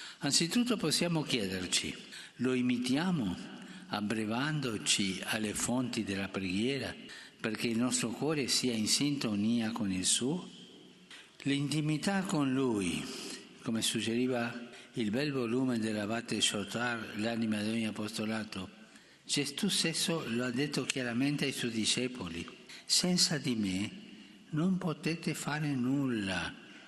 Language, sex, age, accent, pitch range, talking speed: Italian, male, 60-79, native, 110-150 Hz, 110 wpm